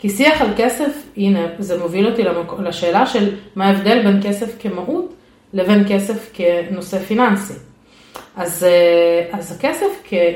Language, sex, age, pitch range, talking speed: Hebrew, female, 30-49, 185-255 Hz, 140 wpm